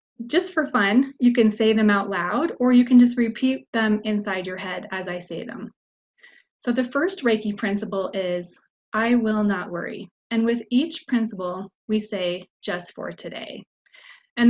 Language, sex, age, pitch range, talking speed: English, female, 20-39, 190-240 Hz, 175 wpm